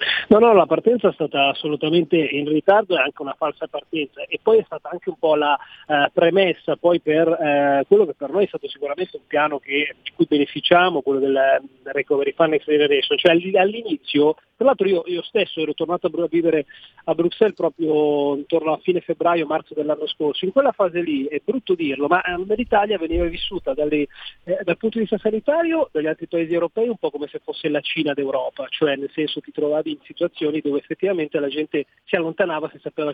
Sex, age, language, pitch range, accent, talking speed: male, 40-59, Italian, 150-195 Hz, native, 205 wpm